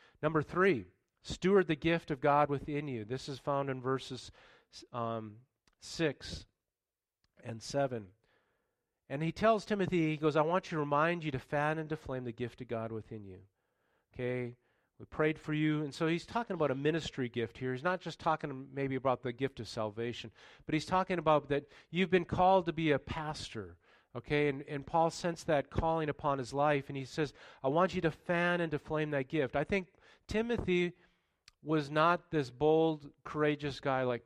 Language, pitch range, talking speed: English, 130-165 Hz, 195 wpm